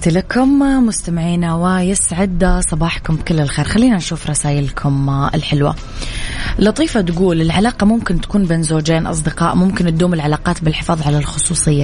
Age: 20-39